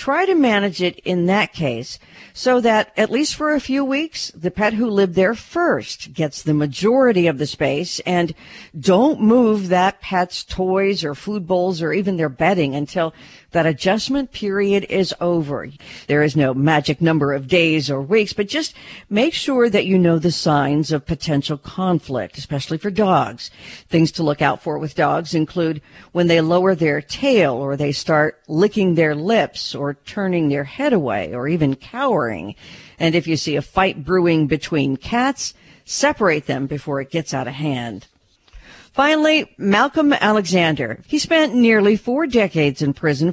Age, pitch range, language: 50-69, 150-210 Hz, English